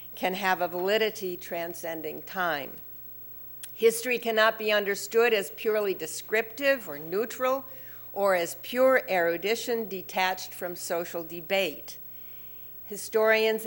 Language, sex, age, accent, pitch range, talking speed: English, female, 50-69, American, 175-220 Hz, 105 wpm